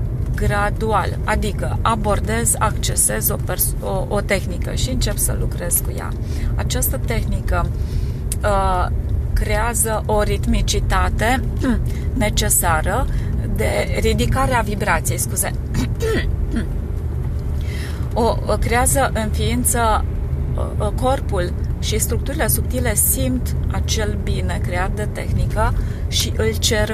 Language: Romanian